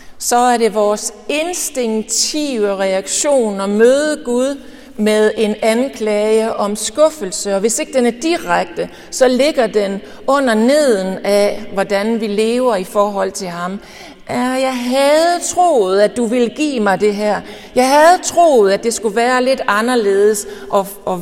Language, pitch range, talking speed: Danish, 200-270 Hz, 150 wpm